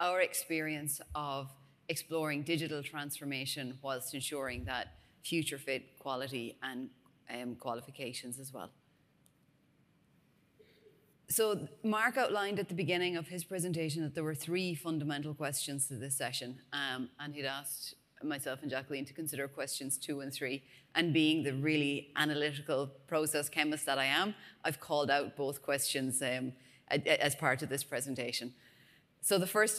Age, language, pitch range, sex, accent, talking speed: 30-49, English, 140-175 Hz, female, Irish, 145 wpm